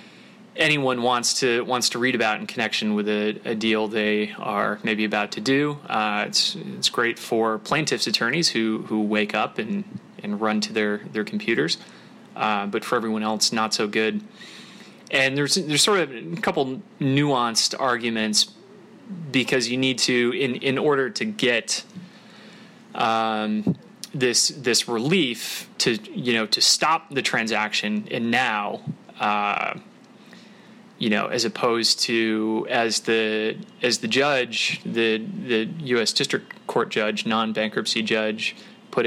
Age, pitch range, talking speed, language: 20-39, 110-165 Hz, 145 wpm, English